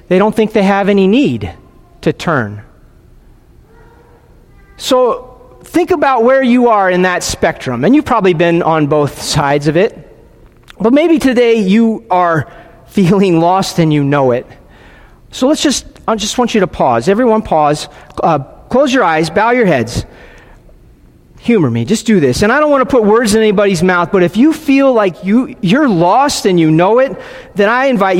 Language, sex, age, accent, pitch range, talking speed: English, male, 40-59, American, 155-240 Hz, 185 wpm